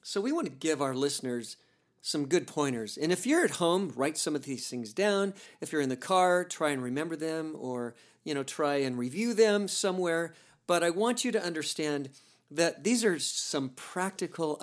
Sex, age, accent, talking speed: male, 50-69, American, 200 wpm